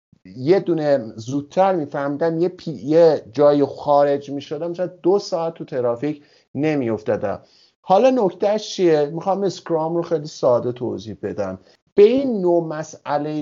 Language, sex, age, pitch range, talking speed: Persian, male, 50-69, 135-175 Hz, 140 wpm